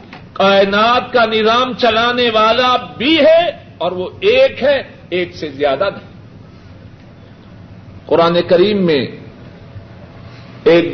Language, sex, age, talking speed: Urdu, male, 50-69, 105 wpm